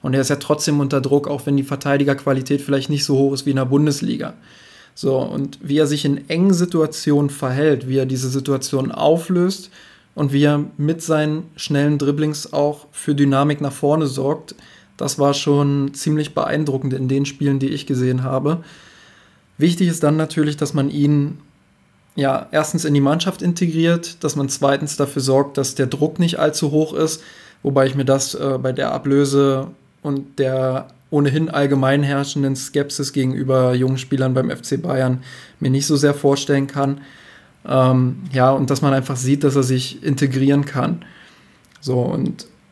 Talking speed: 175 wpm